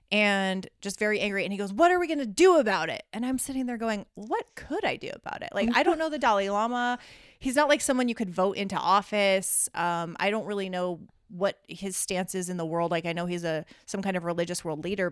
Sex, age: female, 30-49